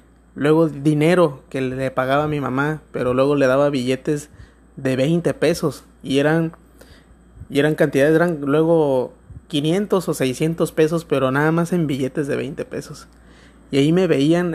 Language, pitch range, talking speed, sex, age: Spanish, 140-165 Hz, 160 wpm, male, 30-49